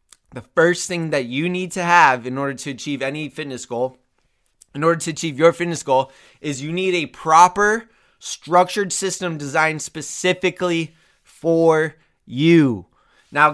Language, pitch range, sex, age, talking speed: English, 145-175 Hz, male, 20-39, 150 wpm